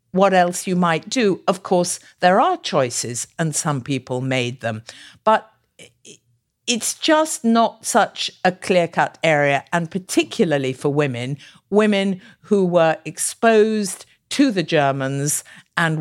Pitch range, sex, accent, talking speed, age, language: 150-195 Hz, female, British, 135 wpm, 50-69, English